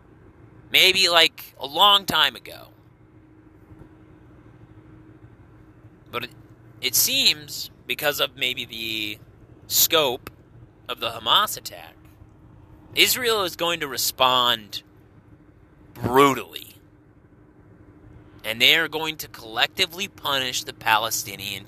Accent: American